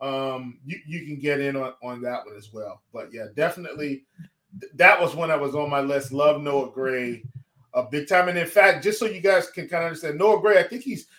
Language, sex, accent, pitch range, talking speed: English, male, American, 140-195 Hz, 250 wpm